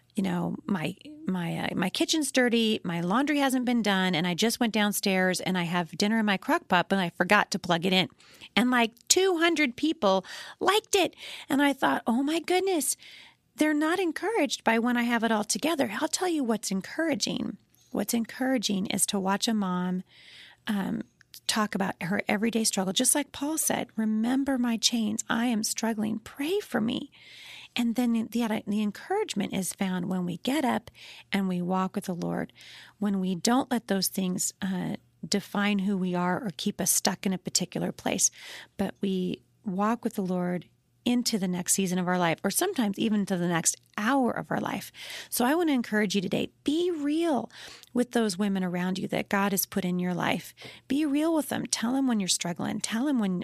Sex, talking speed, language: female, 200 wpm, English